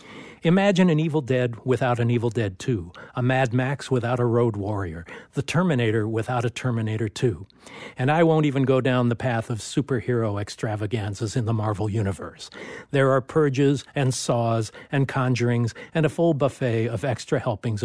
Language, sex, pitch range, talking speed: English, male, 115-140 Hz, 170 wpm